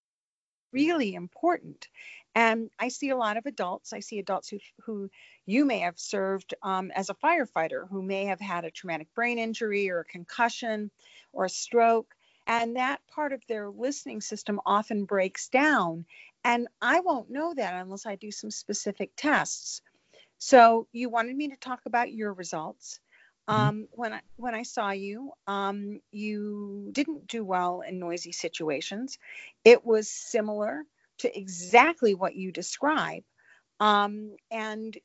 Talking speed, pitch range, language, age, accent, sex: 155 wpm, 195-250 Hz, English, 50-69, American, female